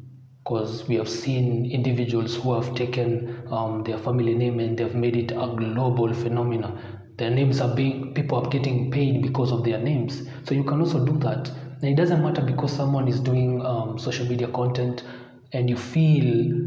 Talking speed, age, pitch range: 185 wpm, 30-49, 120-140 Hz